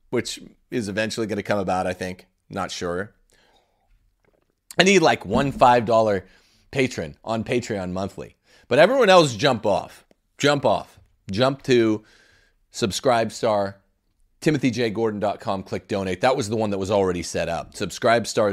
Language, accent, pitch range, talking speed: English, American, 100-125 Hz, 140 wpm